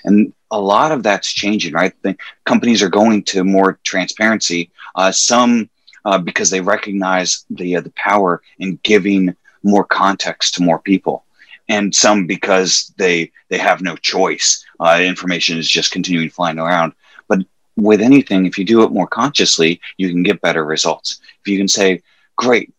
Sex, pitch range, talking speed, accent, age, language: male, 90-105 Hz, 170 wpm, American, 30-49, English